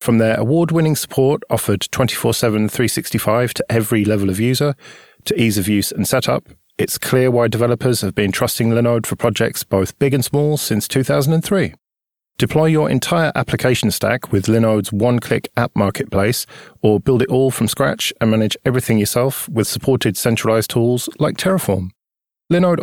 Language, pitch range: English, 110-135 Hz